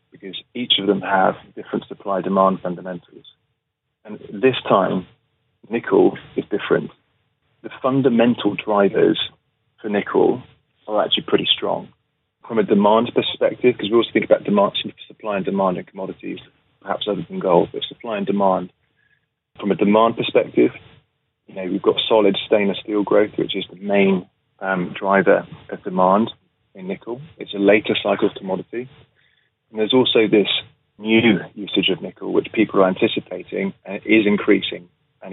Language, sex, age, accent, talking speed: English, male, 30-49, British, 155 wpm